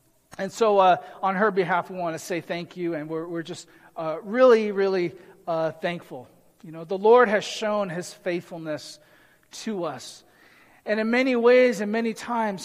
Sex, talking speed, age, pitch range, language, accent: male, 180 wpm, 40-59, 180-225 Hz, English, American